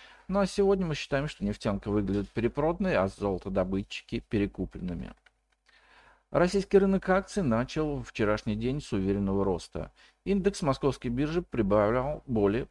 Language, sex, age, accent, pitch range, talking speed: Russian, male, 50-69, native, 95-145 Hz, 125 wpm